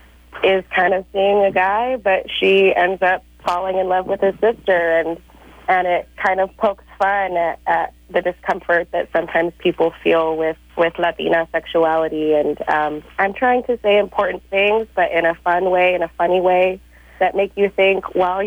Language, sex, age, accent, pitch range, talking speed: English, female, 30-49, American, 165-200 Hz, 185 wpm